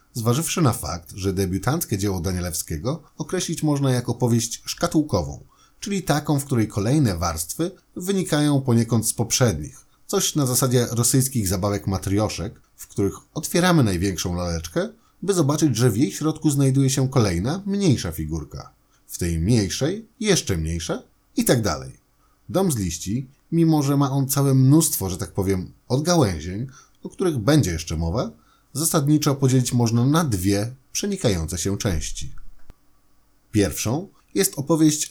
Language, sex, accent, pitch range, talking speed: Polish, male, native, 100-150 Hz, 140 wpm